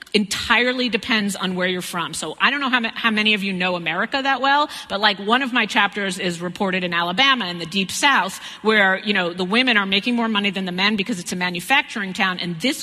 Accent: American